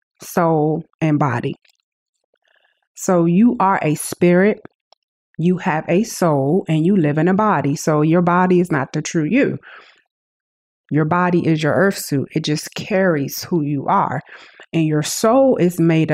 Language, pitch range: English, 165-210 Hz